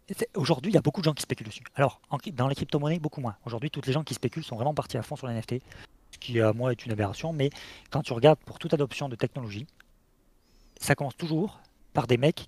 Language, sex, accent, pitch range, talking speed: French, male, French, 115-145 Hz, 255 wpm